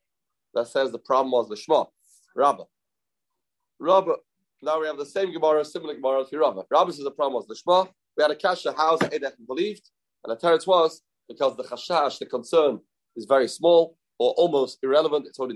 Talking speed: 190 wpm